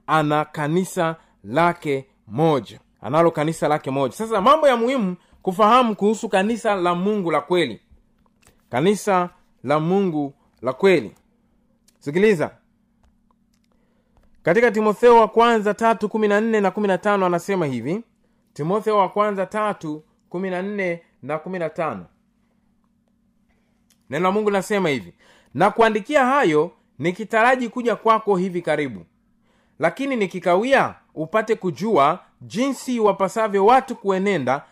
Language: Swahili